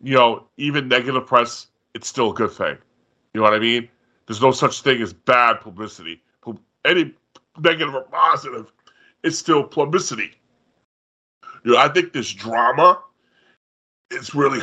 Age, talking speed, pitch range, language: 30-49, 150 wpm, 110-145 Hz, English